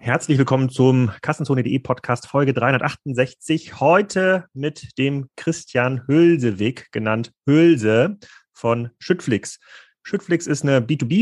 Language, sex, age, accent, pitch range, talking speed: German, male, 30-49, German, 115-145 Hz, 105 wpm